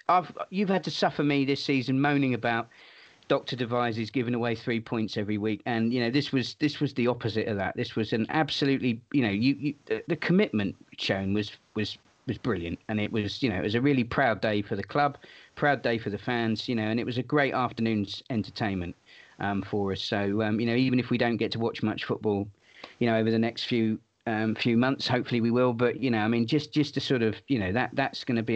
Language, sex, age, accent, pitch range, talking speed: English, male, 40-59, British, 110-130 Hz, 245 wpm